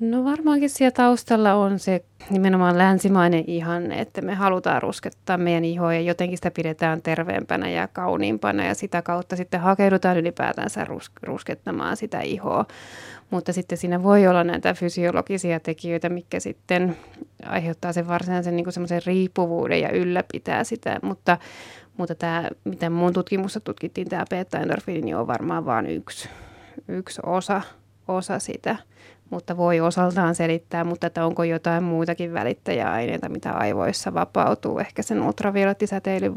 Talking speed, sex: 135 wpm, female